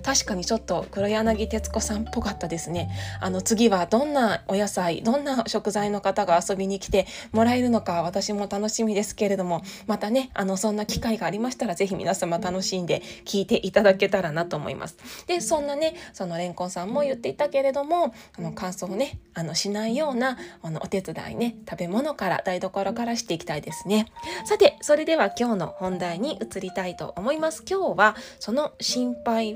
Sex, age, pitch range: female, 20-39, 185-265 Hz